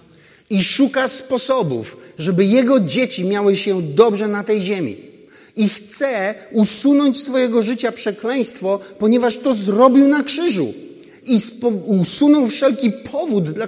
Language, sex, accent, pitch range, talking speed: Polish, male, native, 165-230 Hz, 125 wpm